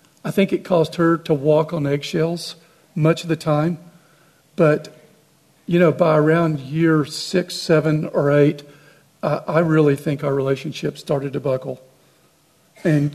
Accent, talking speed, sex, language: American, 145 wpm, male, English